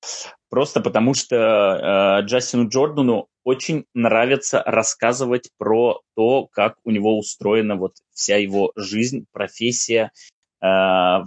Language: Russian